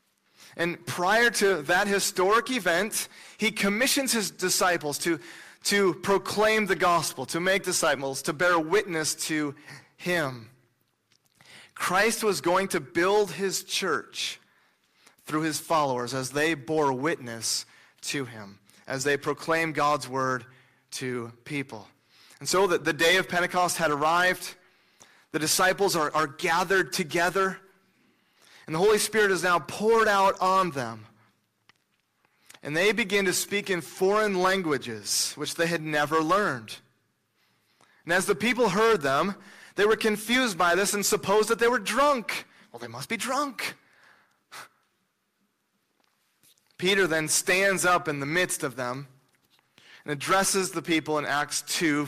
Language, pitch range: English, 145-195 Hz